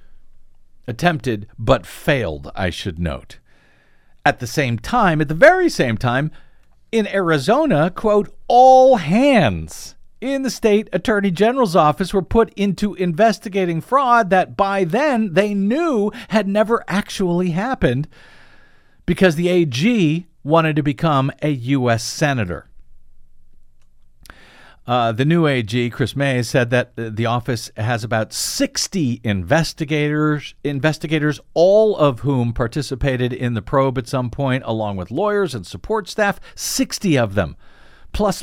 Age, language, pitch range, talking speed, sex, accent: 50-69, English, 115-185 Hz, 130 wpm, male, American